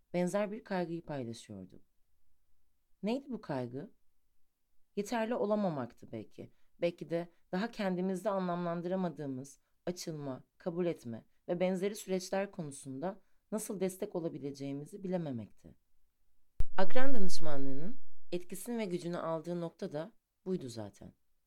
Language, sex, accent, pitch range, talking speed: Turkish, female, native, 140-200 Hz, 100 wpm